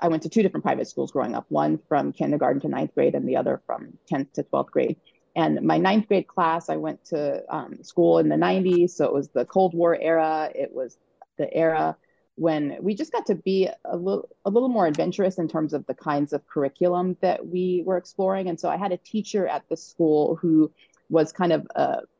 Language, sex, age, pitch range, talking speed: English, female, 30-49, 150-185 Hz, 225 wpm